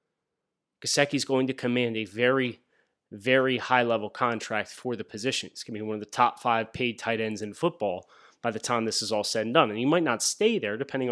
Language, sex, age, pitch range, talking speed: English, male, 30-49, 120-155 Hz, 225 wpm